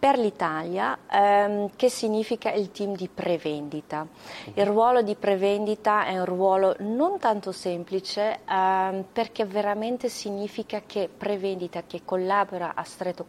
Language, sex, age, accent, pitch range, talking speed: Italian, female, 40-59, native, 170-200 Hz, 130 wpm